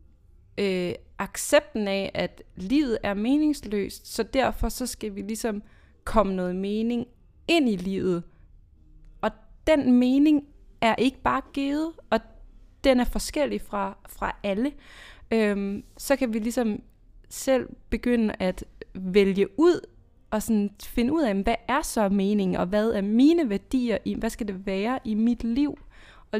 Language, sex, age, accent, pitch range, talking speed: Danish, female, 20-39, native, 185-235 Hz, 150 wpm